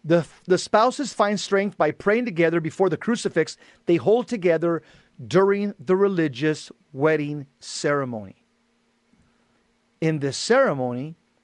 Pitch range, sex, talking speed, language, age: 155-200 Hz, male, 115 wpm, English, 40-59